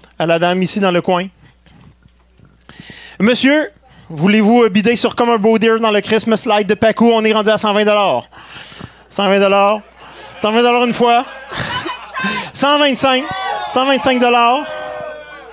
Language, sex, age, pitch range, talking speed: French, male, 30-49, 190-240 Hz, 125 wpm